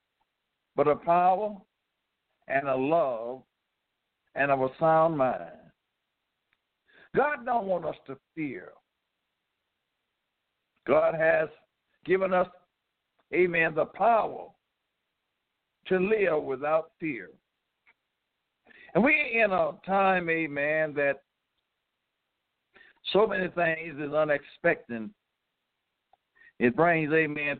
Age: 60-79